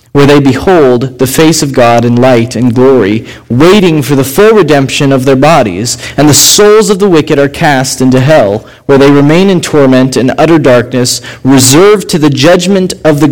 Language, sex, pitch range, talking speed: English, male, 125-165 Hz, 195 wpm